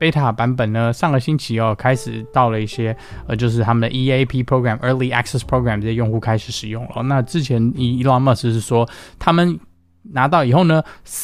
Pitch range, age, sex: 110-135 Hz, 20-39, male